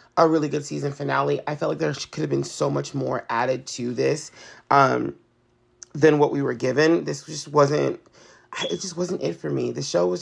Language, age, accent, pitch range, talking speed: English, 30-49, American, 130-175 Hz, 210 wpm